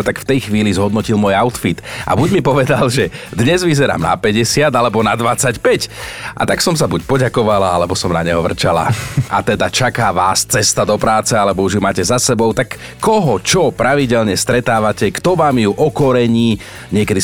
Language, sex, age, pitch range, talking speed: Slovak, male, 40-59, 100-135 Hz, 185 wpm